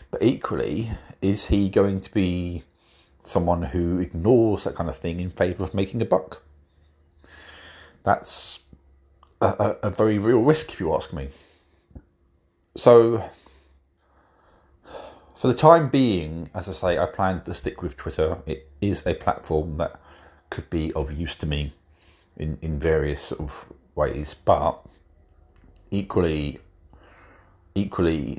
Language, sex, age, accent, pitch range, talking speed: English, male, 40-59, British, 75-90 Hz, 135 wpm